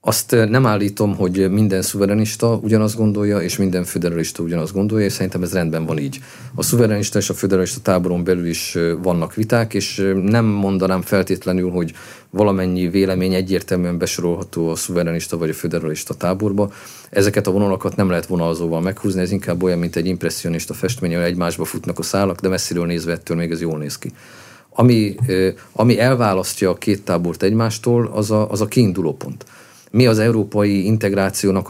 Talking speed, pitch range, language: 170 wpm, 90-110 Hz, Hungarian